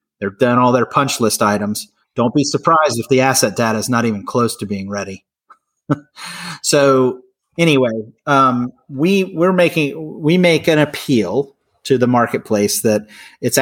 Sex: male